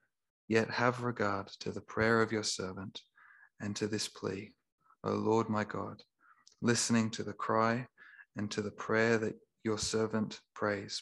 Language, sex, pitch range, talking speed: English, male, 105-115 Hz, 160 wpm